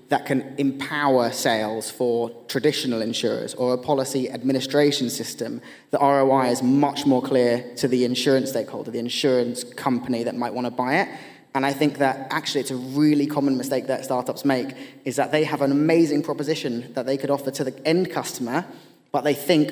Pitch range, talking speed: 125-140 Hz, 185 wpm